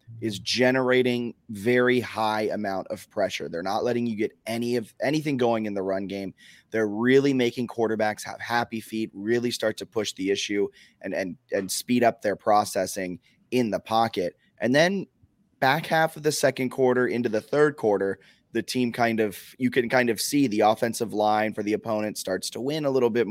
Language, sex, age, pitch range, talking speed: English, male, 20-39, 105-120 Hz, 195 wpm